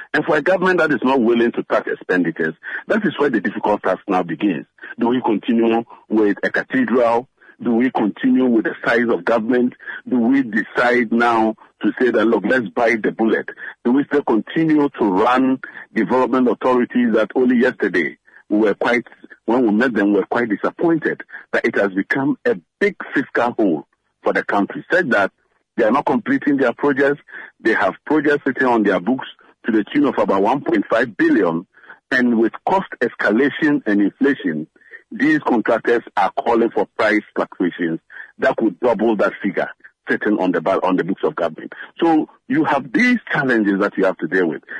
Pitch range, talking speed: 115-190 Hz, 180 wpm